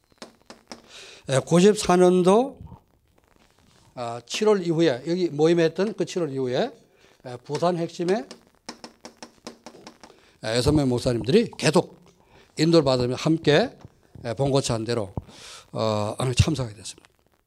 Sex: male